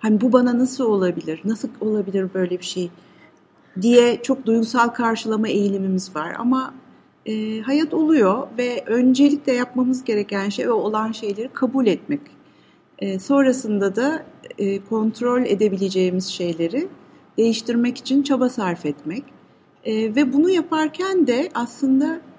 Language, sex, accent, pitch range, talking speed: English, female, Turkish, 205-260 Hz, 130 wpm